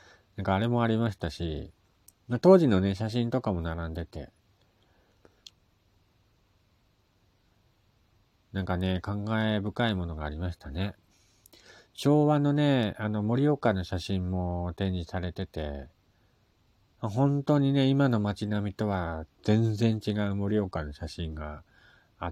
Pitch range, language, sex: 85-110 Hz, Japanese, male